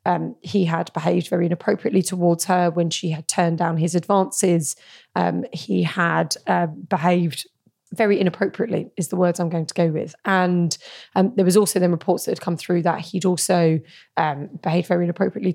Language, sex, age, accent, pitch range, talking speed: English, female, 20-39, British, 170-195 Hz, 180 wpm